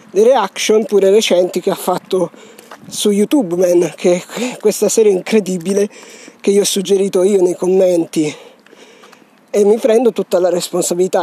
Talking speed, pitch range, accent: 145 wpm, 185-220 Hz, native